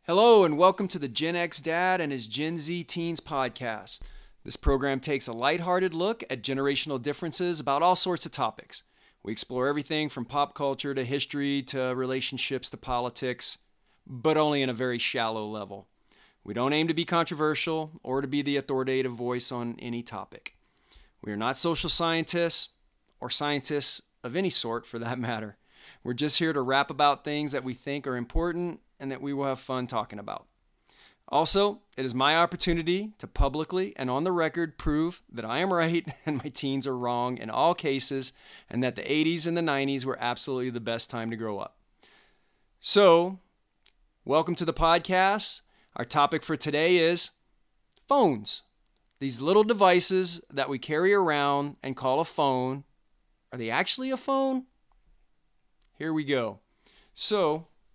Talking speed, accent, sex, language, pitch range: 170 wpm, American, male, English, 130-170 Hz